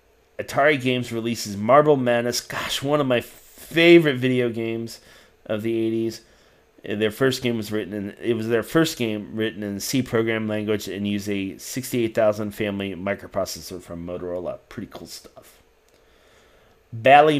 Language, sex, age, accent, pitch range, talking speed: English, male, 30-49, American, 100-120 Hz, 145 wpm